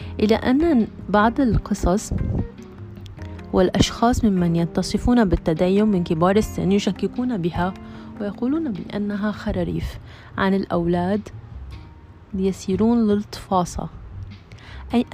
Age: 30-49